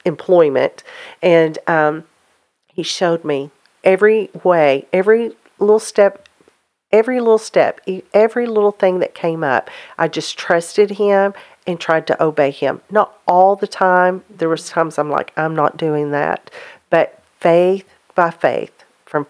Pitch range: 155-190 Hz